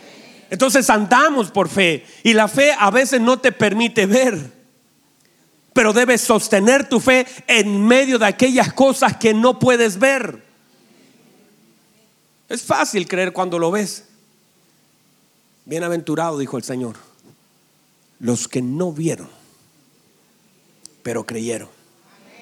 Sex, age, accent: male, 40-59, Mexican